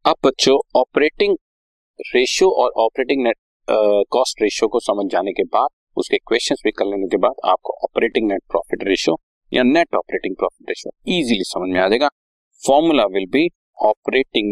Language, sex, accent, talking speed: Hindi, male, native, 150 wpm